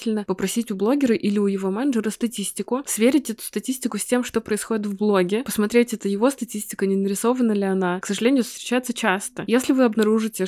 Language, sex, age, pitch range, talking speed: Russian, female, 20-39, 195-225 Hz, 185 wpm